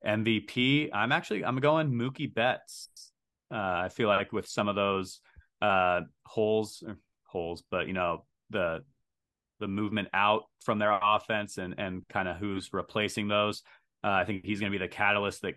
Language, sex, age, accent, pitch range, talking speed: English, male, 30-49, American, 95-110 Hz, 175 wpm